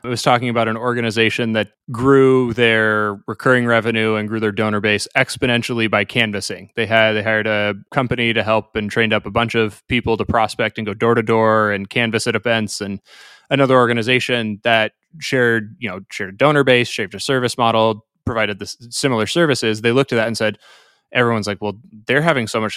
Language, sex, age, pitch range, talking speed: English, male, 20-39, 110-125 Hz, 205 wpm